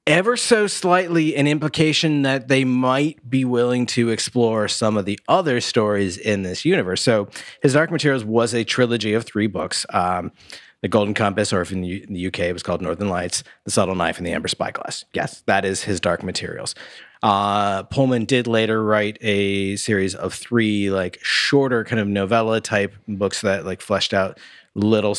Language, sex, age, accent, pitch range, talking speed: English, male, 30-49, American, 90-115 Hz, 190 wpm